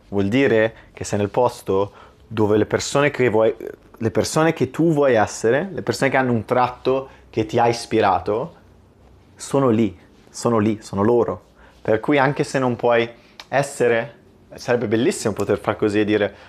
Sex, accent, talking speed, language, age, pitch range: male, native, 170 wpm, Italian, 30-49, 105-125 Hz